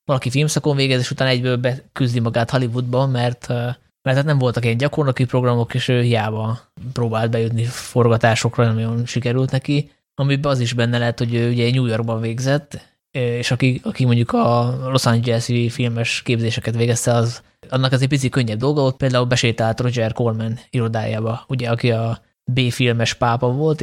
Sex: male